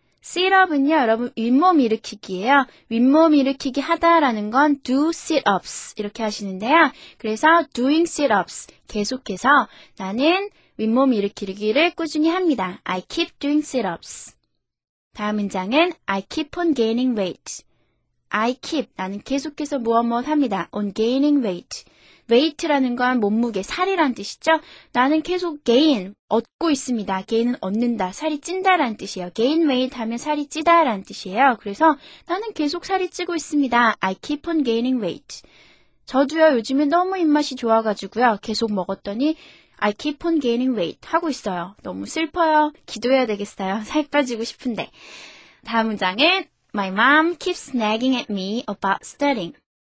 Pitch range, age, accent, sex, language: 220-315 Hz, 20-39, native, female, Korean